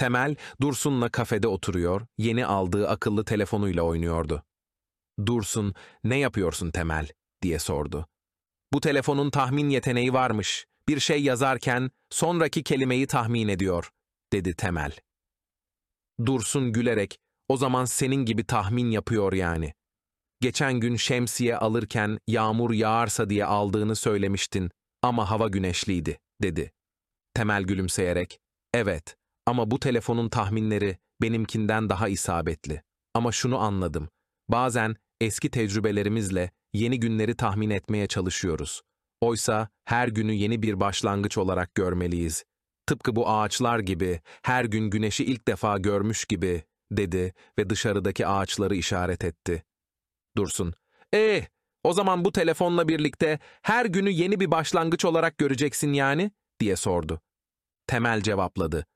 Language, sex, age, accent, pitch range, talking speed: Turkish, male, 30-49, native, 95-125 Hz, 120 wpm